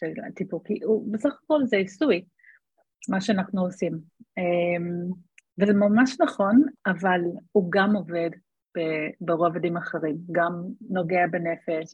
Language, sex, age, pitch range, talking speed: Hebrew, female, 30-49, 175-220 Hz, 105 wpm